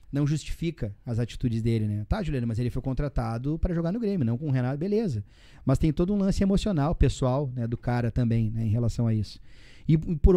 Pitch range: 120-145 Hz